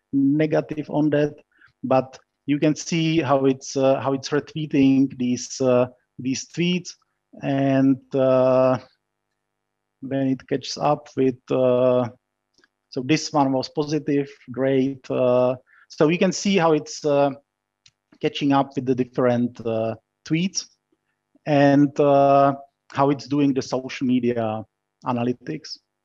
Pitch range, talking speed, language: 130-150 Hz, 125 wpm, English